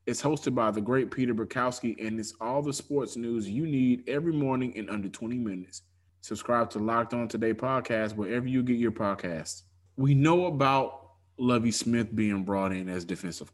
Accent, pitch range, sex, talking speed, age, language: American, 105-135 Hz, male, 185 wpm, 20-39, English